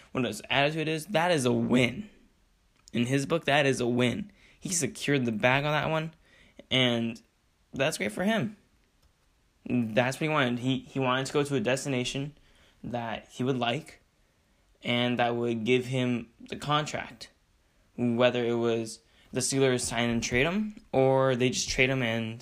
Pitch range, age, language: 115-135 Hz, 10-29, English